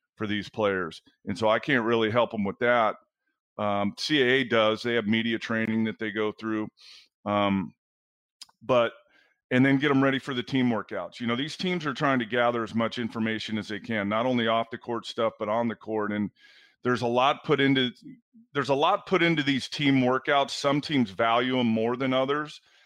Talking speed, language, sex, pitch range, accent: 205 wpm, English, male, 110-140 Hz, American